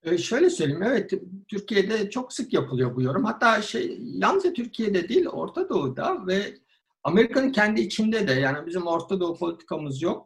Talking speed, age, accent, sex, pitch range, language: 160 wpm, 60-79, native, male, 130-200 Hz, Turkish